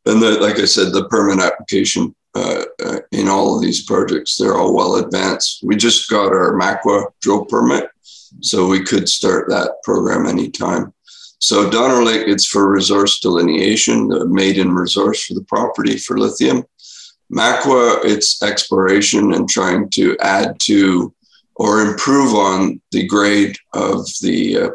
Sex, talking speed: male, 150 wpm